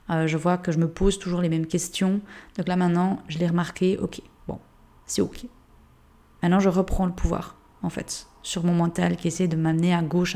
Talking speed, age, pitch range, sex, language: 215 wpm, 20-39, 170-195 Hz, female, French